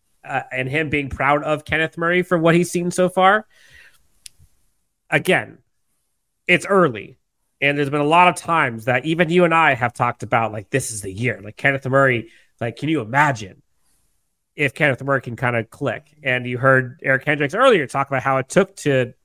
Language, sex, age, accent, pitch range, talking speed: English, male, 30-49, American, 125-175 Hz, 195 wpm